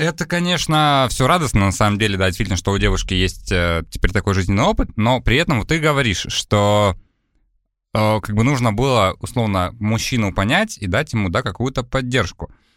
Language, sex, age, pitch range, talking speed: Russian, male, 20-39, 95-130 Hz, 185 wpm